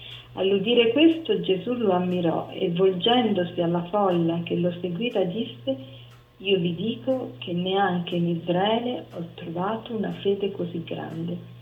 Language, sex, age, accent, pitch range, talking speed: Italian, female, 40-59, native, 175-225 Hz, 135 wpm